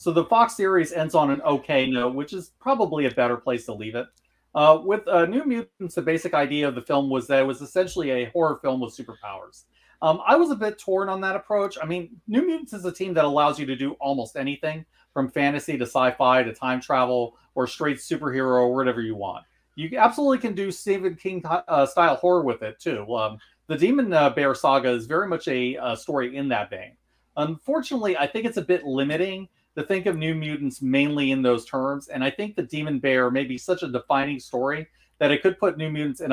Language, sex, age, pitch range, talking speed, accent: English, male, 30-49, 130-180 Hz, 225 wpm, American